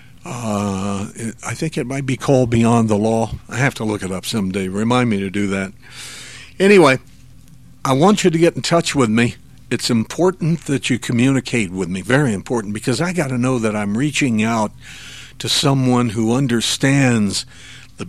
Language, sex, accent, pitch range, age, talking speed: English, male, American, 115-140 Hz, 60-79, 180 wpm